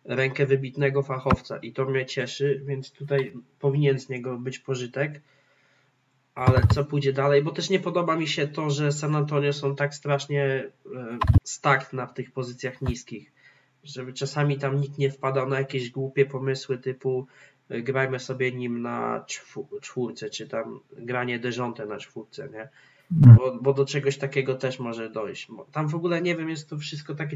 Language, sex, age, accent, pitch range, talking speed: Polish, male, 20-39, native, 130-145 Hz, 170 wpm